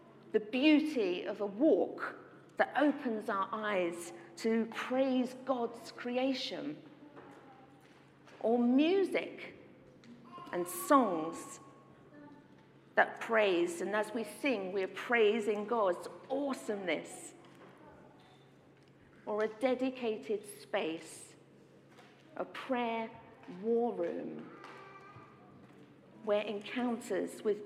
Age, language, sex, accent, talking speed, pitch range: 50-69, English, female, British, 80 wpm, 220-280 Hz